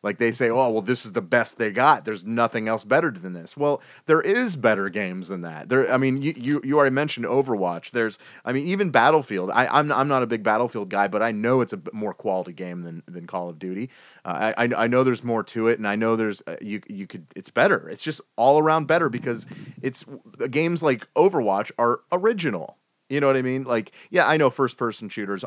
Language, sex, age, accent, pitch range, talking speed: English, male, 30-49, American, 105-140 Hz, 235 wpm